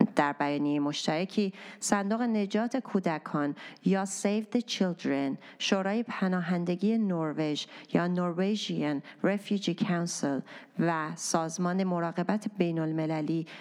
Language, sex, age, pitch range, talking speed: Persian, female, 30-49, 160-200 Hz, 95 wpm